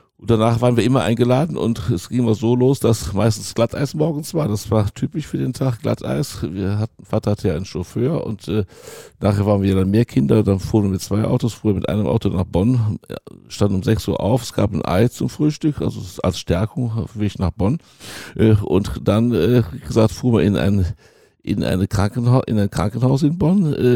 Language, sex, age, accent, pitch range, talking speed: German, male, 60-79, German, 95-115 Hz, 220 wpm